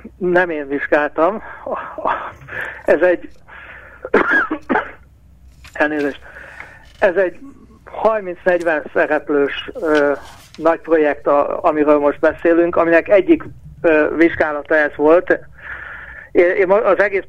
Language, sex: Hungarian, male